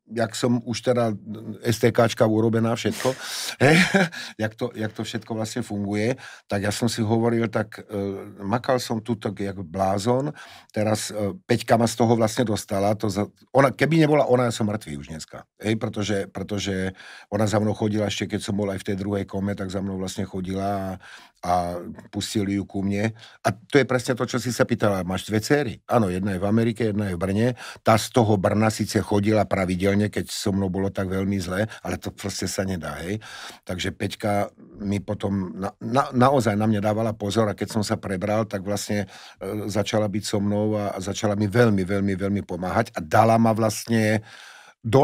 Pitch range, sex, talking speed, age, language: 100-115 Hz, male, 195 wpm, 50-69, Slovak